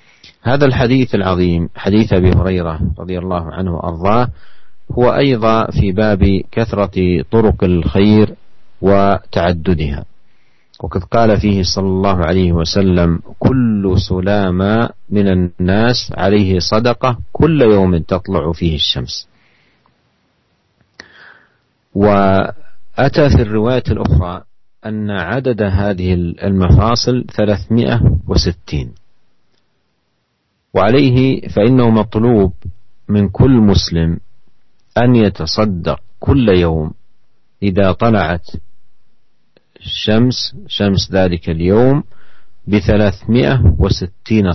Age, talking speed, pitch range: 50-69, 85 wpm, 90-110 Hz